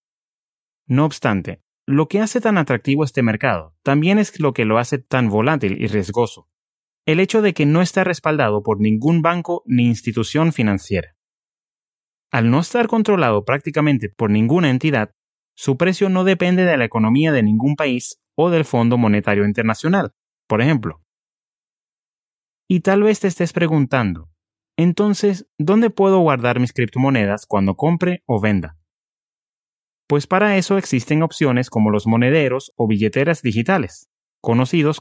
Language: English